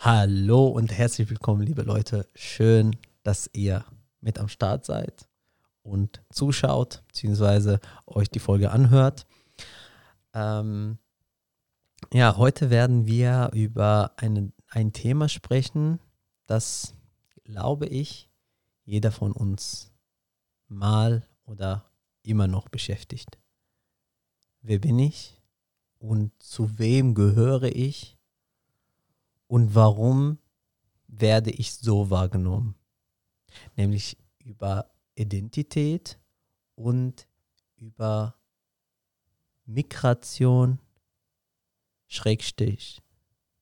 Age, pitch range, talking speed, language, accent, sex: 40-59, 105-120 Hz, 85 wpm, German, German, male